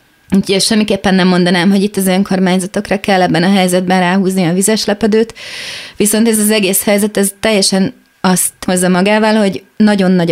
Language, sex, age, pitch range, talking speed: Hungarian, female, 30-49, 185-205 Hz, 170 wpm